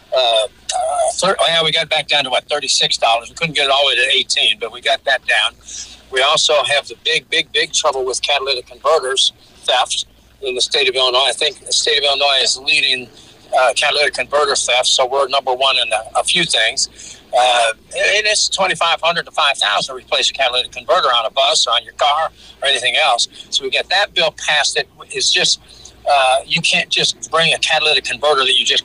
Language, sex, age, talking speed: English, male, 50-69, 220 wpm